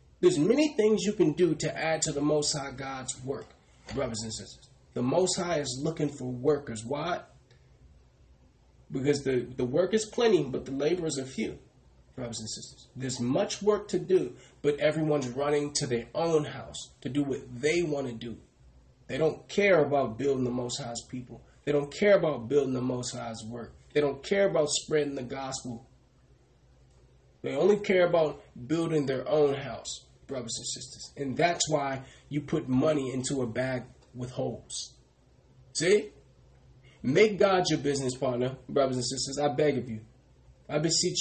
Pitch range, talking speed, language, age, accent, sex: 115-155 Hz, 175 wpm, English, 30-49, American, male